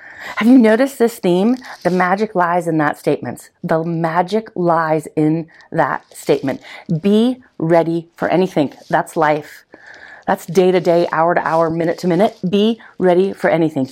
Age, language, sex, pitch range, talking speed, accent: 40-59, English, female, 155-195 Hz, 135 wpm, American